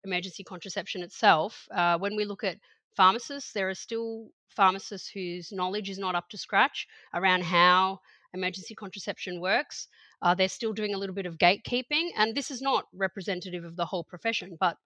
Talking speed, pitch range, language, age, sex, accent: 180 wpm, 180-215 Hz, English, 30-49, female, Australian